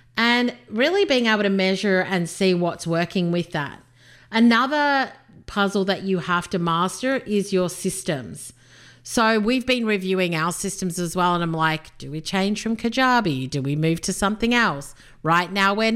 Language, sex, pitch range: English, female, 165-225 Hz